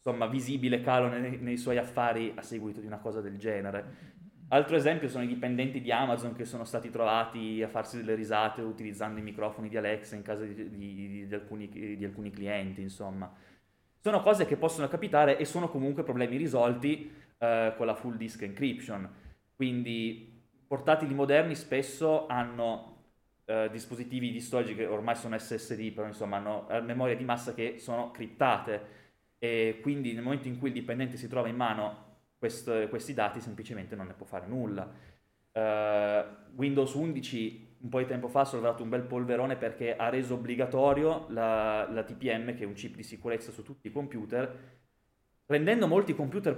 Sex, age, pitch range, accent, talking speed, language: male, 20-39, 110-130 Hz, native, 175 wpm, Italian